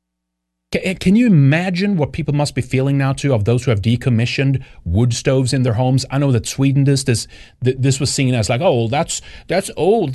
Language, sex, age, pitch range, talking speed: English, male, 30-49, 100-135 Hz, 215 wpm